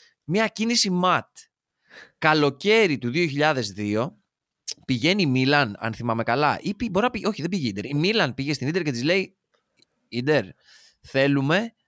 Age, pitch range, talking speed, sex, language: 20-39, 115-185 Hz, 140 wpm, male, Greek